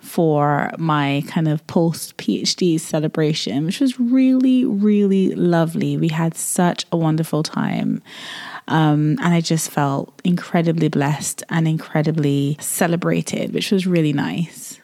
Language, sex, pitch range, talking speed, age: English, female, 165-200 Hz, 130 wpm, 20-39